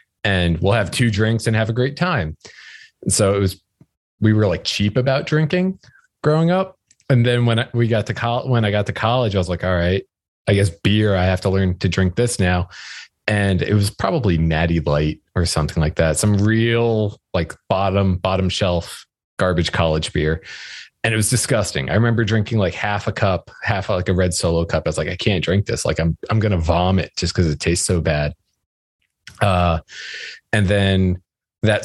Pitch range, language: 85-110 Hz, English